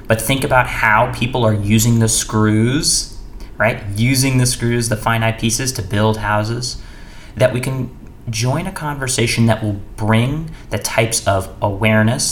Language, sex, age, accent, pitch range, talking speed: English, male, 30-49, American, 105-130 Hz, 155 wpm